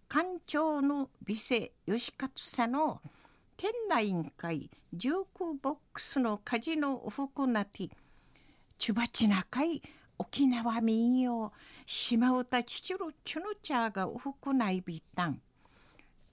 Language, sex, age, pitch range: Japanese, female, 50-69, 215-285 Hz